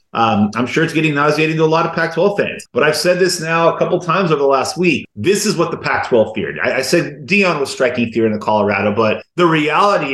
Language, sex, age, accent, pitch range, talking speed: English, male, 30-49, American, 125-170 Hz, 270 wpm